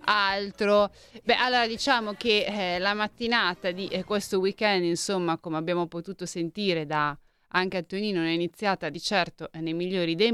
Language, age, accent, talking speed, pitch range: Italian, 30-49, native, 150 wpm, 165-195 Hz